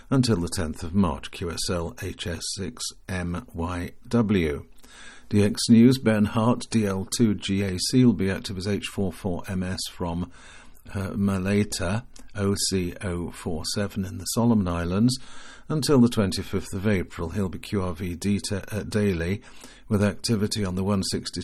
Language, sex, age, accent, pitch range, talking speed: English, male, 50-69, British, 95-115 Hz, 110 wpm